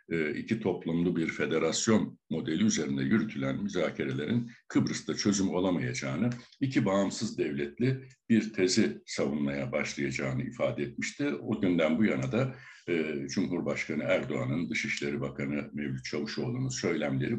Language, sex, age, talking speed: Turkish, male, 60-79, 115 wpm